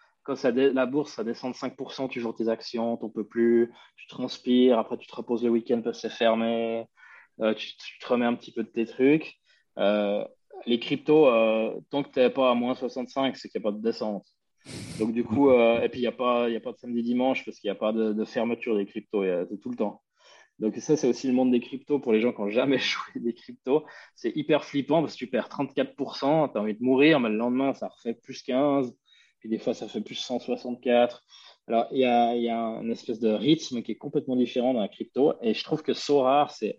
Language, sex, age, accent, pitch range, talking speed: French, male, 20-39, French, 115-135 Hz, 250 wpm